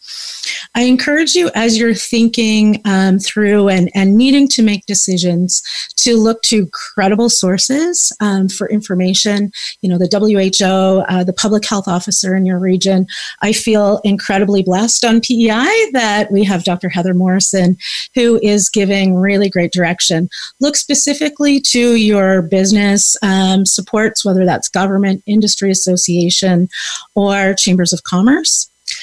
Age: 30-49